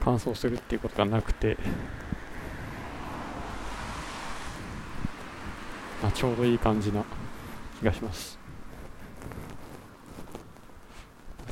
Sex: male